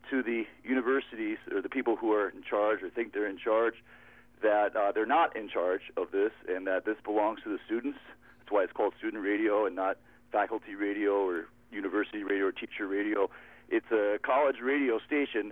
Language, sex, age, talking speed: English, male, 40-59, 195 wpm